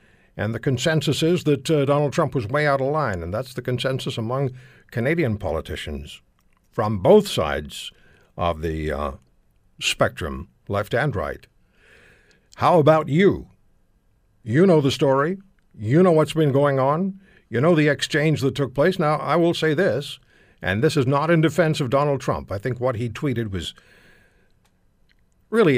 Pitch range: 100-155 Hz